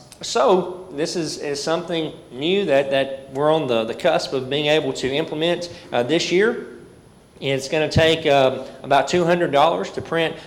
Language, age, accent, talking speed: English, 40-59, American, 170 wpm